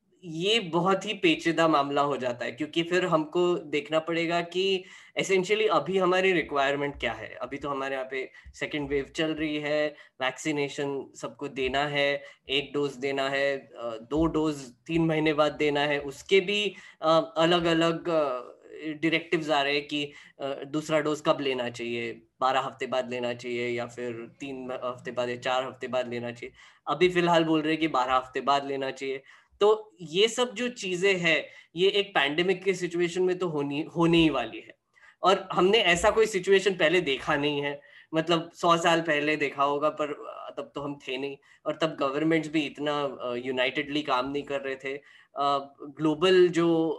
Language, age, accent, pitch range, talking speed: Hindi, 10-29, native, 140-170 Hz, 175 wpm